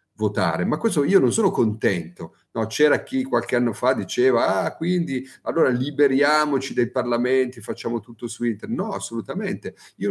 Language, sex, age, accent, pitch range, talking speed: Italian, male, 40-59, native, 110-135 Hz, 160 wpm